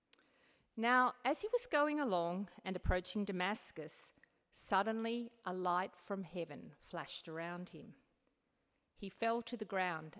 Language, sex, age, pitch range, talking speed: English, female, 50-69, 180-230 Hz, 130 wpm